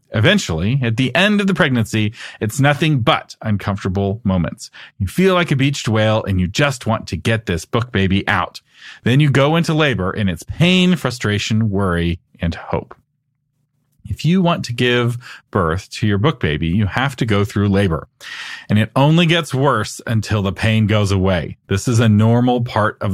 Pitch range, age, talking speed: 100-140 Hz, 40-59, 185 wpm